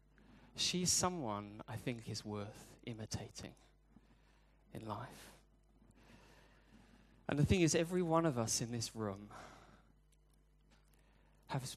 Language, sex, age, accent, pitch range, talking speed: English, male, 30-49, British, 115-160 Hz, 105 wpm